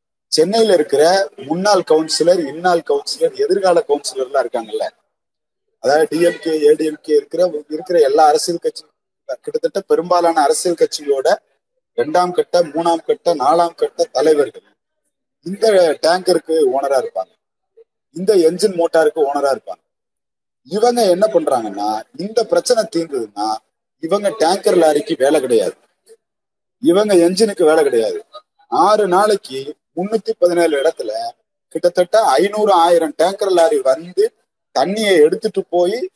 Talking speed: 110 wpm